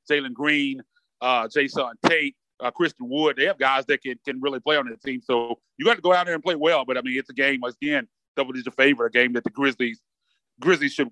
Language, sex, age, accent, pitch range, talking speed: English, male, 30-49, American, 130-155 Hz, 255 wpm